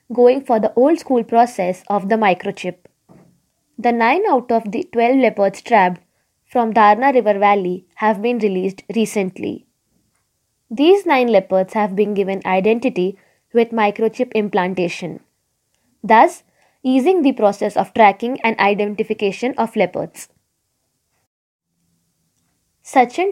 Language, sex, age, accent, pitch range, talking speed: Marathi, female, 20-39, native, 200-240 Hz, 120 wpm